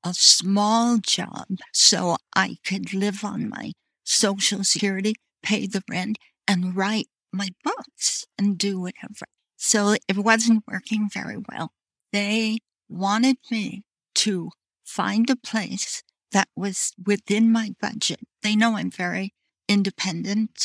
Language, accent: English, American